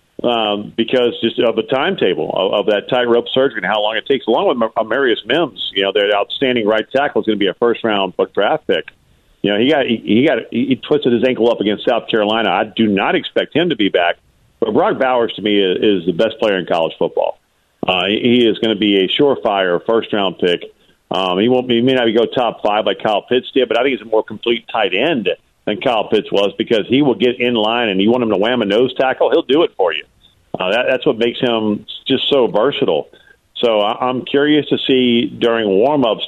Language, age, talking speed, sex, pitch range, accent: English, 50-69, 245 wpm, male, 105-125 Hz, American